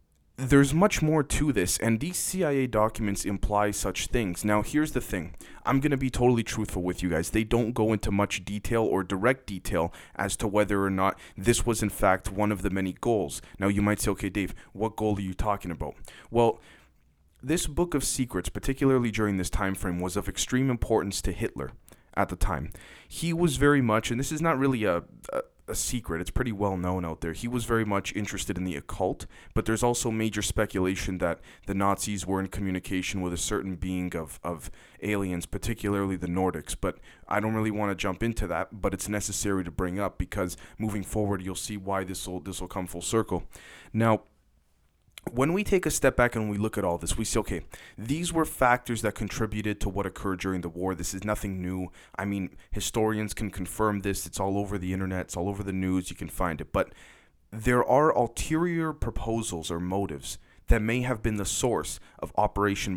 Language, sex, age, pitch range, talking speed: English, male, 20-39, 90-115 Hz, 210 wpm